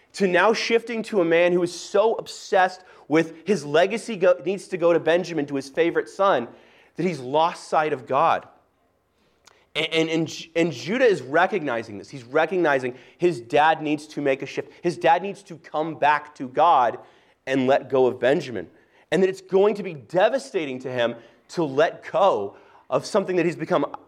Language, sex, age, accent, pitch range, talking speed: English, male, 30-49, American, 155-200 Hz, 180 wpm